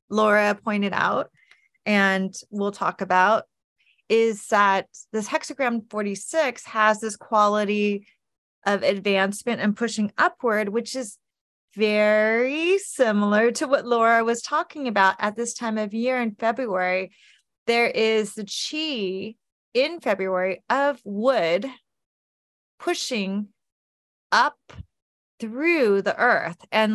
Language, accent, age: English, American, 30-49